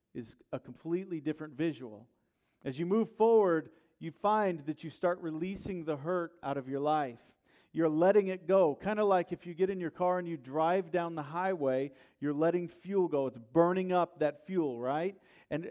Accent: American